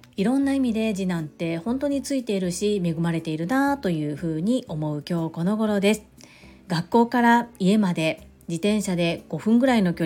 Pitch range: 170-220 Hz